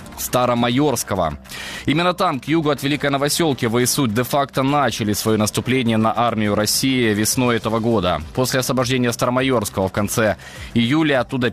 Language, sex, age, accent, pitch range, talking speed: Ukrainian, male, 20-39, native, 110-135 Hz, 135 wpm